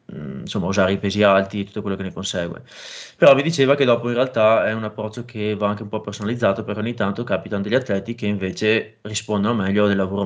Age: 20-39